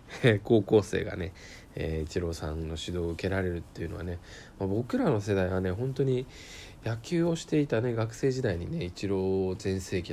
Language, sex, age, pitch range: Japanese, male, 20-39, 85-115 Hz